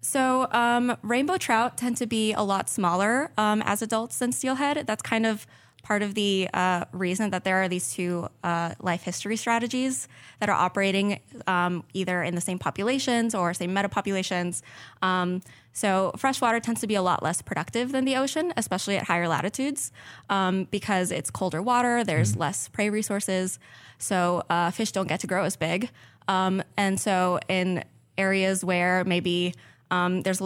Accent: American